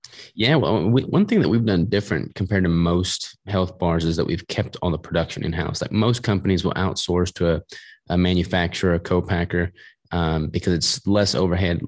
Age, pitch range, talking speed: 20-39, 85-95 Hz, 195 wpm